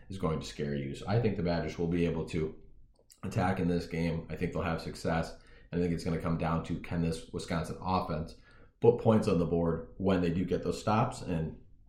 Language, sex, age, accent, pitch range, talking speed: English, male, 30-49, American, 85-100 Hz, 235 wpm